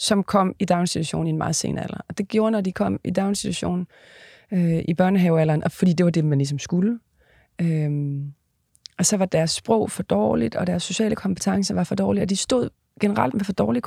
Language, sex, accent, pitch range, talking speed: Danish, female, native, 170-210 Hz, 215 wpm